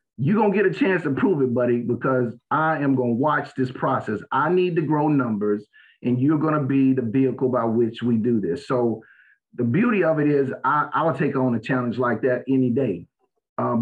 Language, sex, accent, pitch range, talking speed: English, male, American, 125-150 Hz, 210 wpm